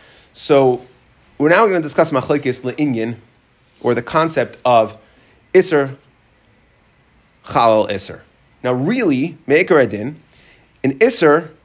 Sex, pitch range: male, 125-175 Hz